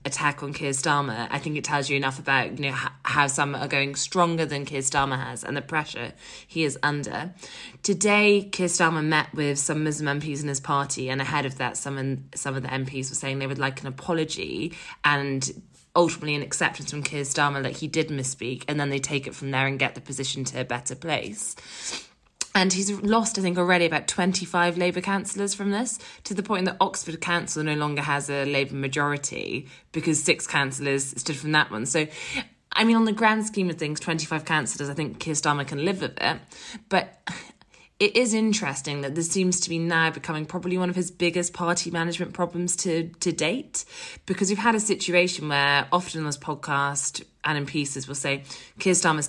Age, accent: 20-39, British